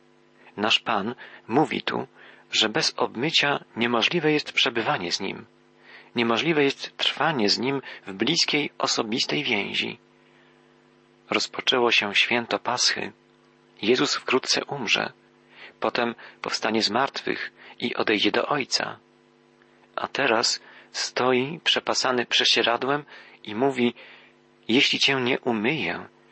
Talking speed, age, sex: 105 wpm, 40-59, male